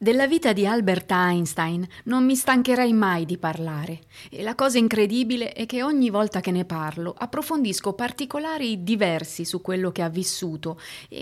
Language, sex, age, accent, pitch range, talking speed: Italian, female, 30-49, native, 175-225 Hz, 165 wpm